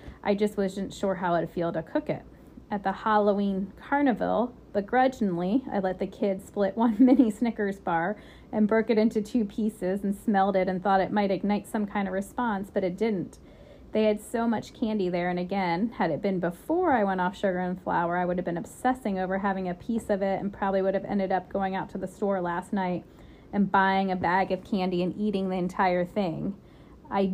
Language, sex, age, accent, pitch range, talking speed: English, female, 30-49, American, 185-205 Hz, 220 wpm